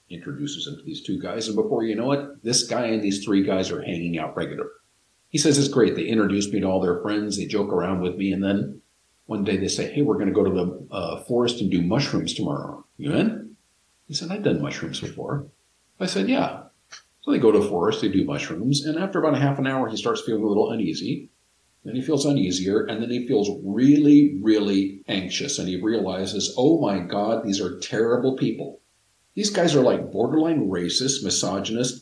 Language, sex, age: English, male, 50-69